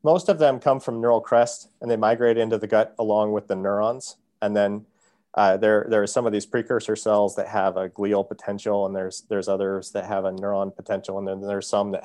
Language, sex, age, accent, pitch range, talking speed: English, male, 40-59, American, 100-115 Hz, 235 wpm